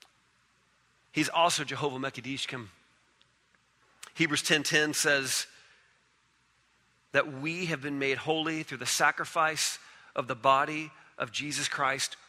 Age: 40-59